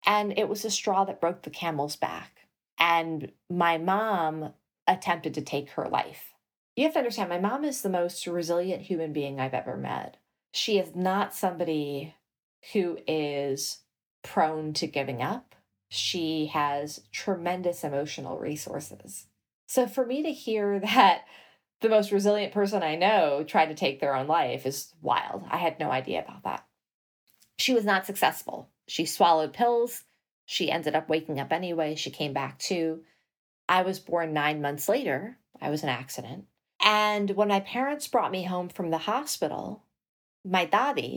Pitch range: 155-200 Hz